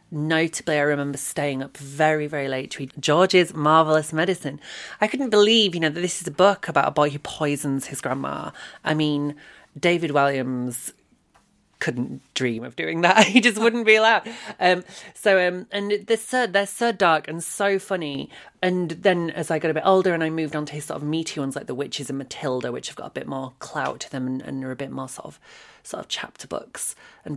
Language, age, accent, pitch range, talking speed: English, 30-49, British, 140-175 Hz, 220 wpm